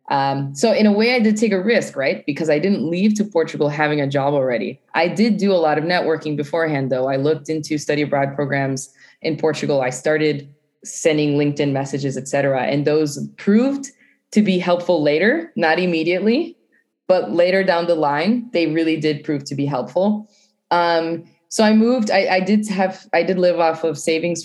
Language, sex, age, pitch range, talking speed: English, female, 20-39, 145-190 Hz, 195 wpm